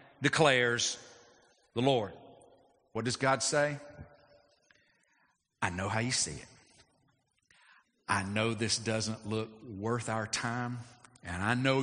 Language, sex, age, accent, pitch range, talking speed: English, male, 50-69, American, 110-140 Hz, 120 wpm